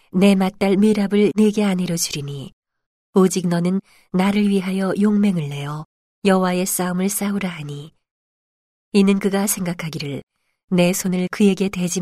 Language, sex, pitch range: Korean, female, 160-205 Hz